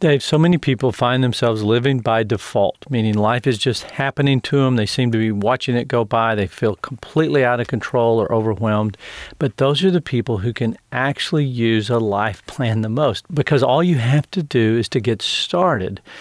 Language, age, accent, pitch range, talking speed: English, 40-59, American, 115-140 Hz, 205 wpm